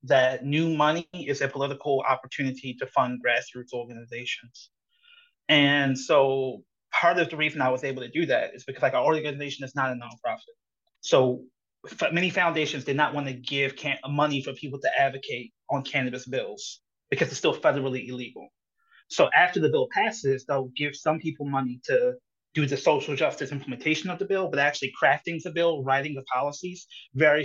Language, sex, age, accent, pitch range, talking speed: English, male, 30-49, American, 130-155 Hz, 180 wpm